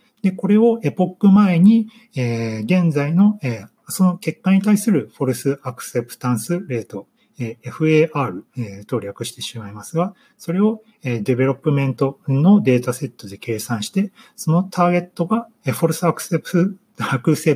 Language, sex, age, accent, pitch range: Japanese, male, 40-59, native, 125-205 Hz